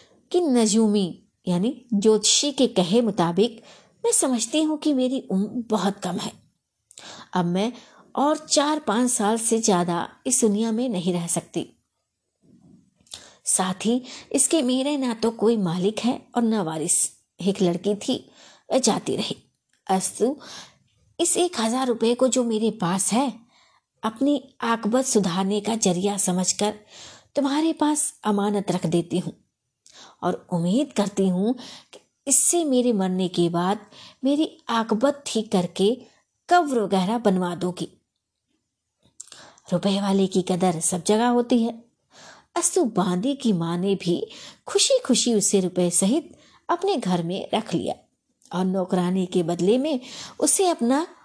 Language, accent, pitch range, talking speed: Hindi, native, 185-255 Hz, 110 wpm